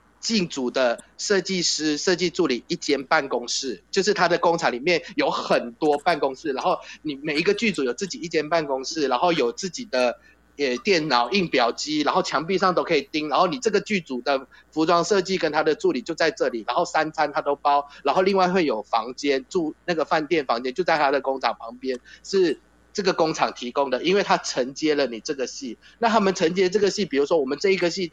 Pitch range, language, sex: 135-185 Hz, Chinese, male